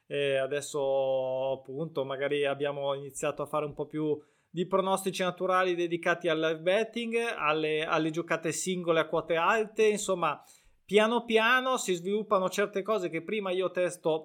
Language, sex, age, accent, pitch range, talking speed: Italian, male, 20-39, native, 150-190 Hz, 150 wpm